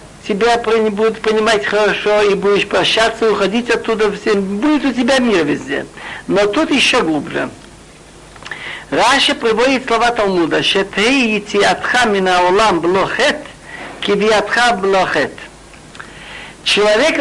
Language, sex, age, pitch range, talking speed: Russian, male, 60-79, 205-245 Hz, 110 wpm